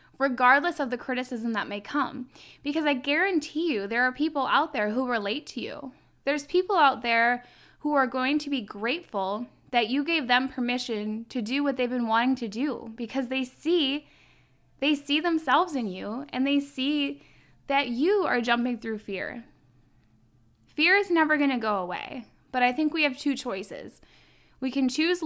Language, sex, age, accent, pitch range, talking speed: English, female, 10-29, American, 230-280 Hz, 180 wpm